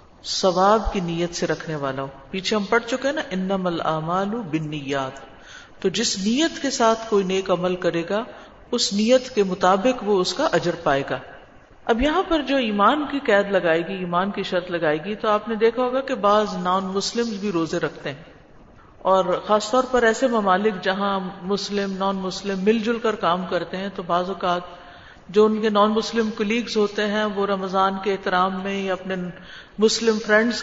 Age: 50-69